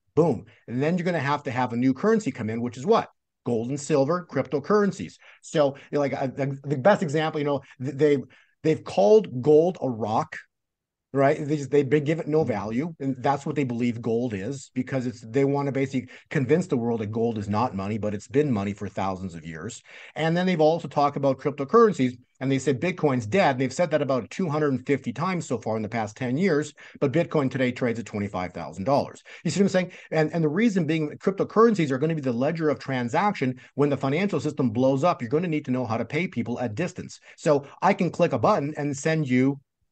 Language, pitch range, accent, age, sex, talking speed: English, 125-165 Hz, American, 50-69, male, 225 wpm